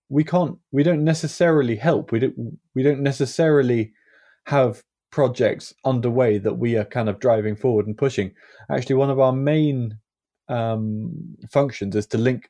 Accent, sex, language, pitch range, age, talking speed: British, male, English, 105-135 Hz, 20-39, 160 wpm